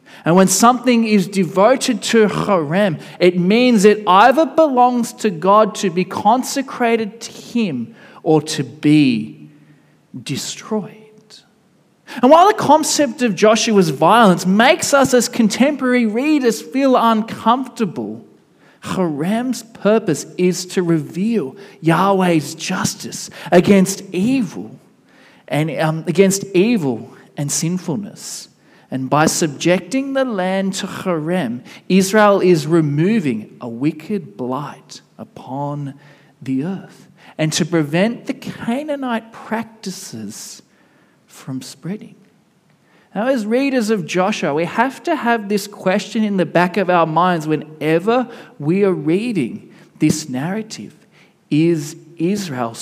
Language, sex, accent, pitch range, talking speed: English, male, Australian, 165-230 Hz, 115 wpm